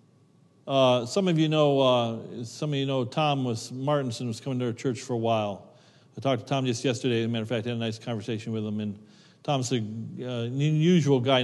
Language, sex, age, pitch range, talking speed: English, male, 50-69, 125-155 Hz, 240 wpm